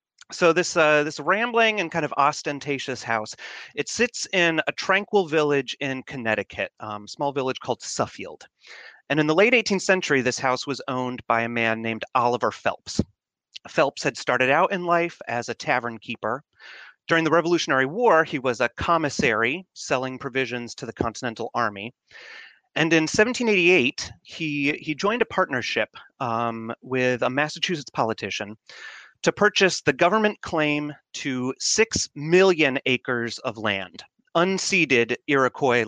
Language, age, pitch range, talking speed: English, 30-49, 125-160 Hz, 150 wpm